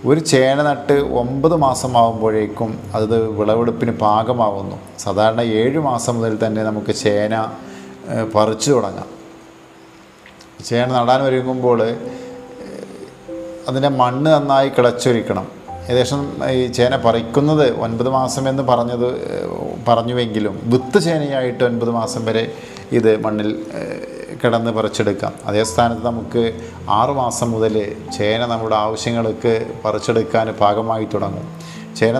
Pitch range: 110-130 Hz